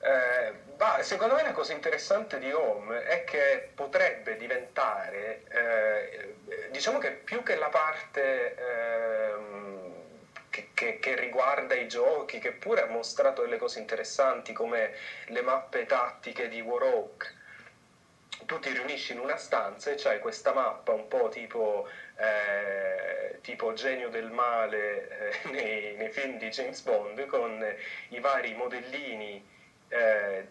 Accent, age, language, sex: native, 30-49, Italian, male